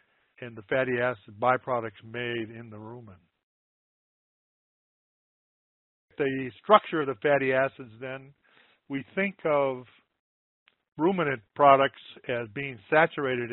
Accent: American